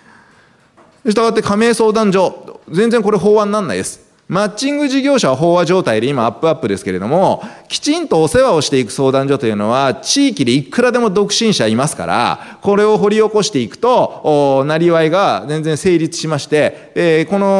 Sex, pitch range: male, 125-210 Hz